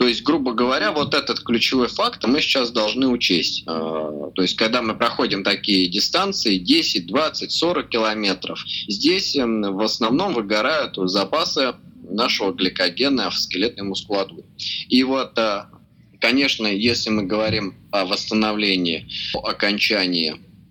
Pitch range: 95-115 Hz